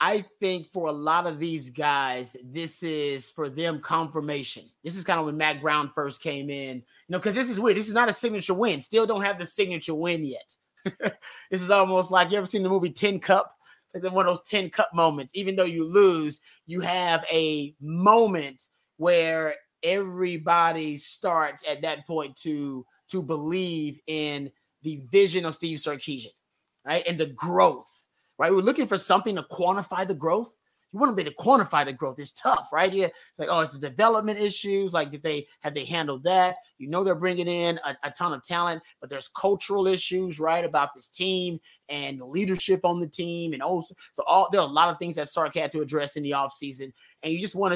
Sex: male